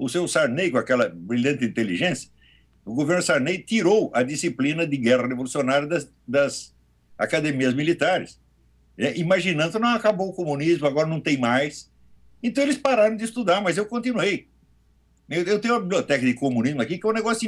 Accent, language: Brazilian, Portuguese